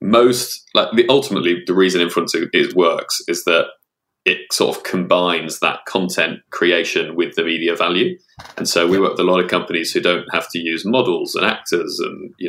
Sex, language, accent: male, English, British